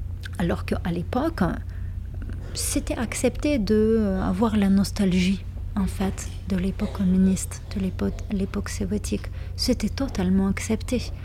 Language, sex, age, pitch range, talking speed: French, female, 30-49, 90-105 Hz, 105 wpm